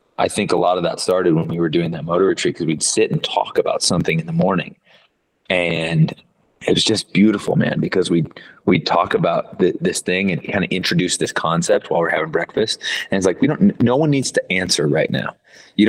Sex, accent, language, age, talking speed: male, American, English, 30-49, 235 wpm